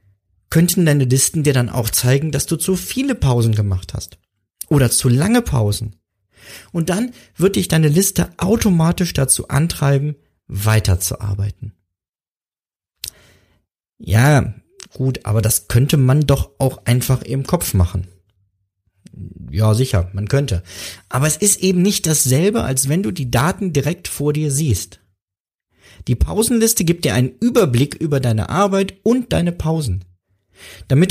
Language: German